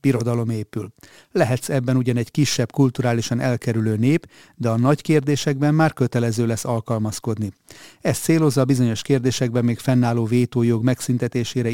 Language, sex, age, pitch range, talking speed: Hungarian, male, 30-49, 115-140 Hz, 140 wpm